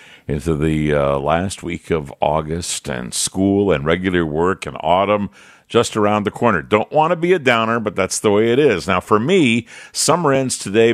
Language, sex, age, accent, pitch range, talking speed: English, male, 50-69, American, 85-115 Hz, 200 wpm